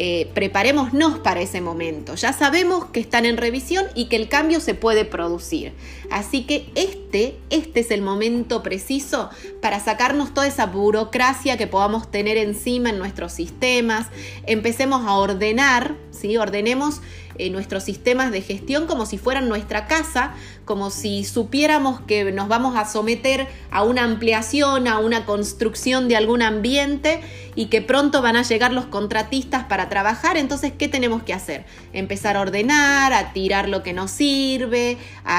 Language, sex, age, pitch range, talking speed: Spanish, female, 30-49, 200-265 Hz, 160 wpm